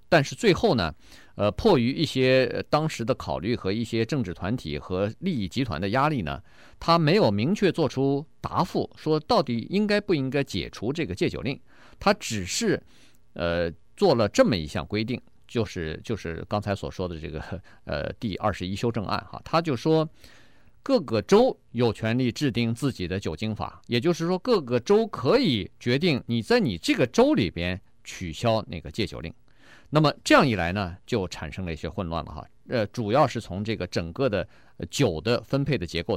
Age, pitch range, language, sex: 50-69, 95-150 Hz, Chinese, male